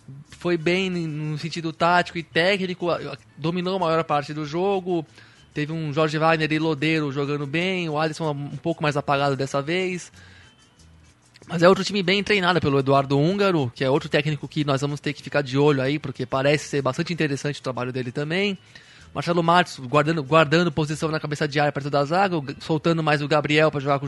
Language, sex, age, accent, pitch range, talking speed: Portuguese, male, 20-39, Brazilian, 145-175 Hz, 195 wpm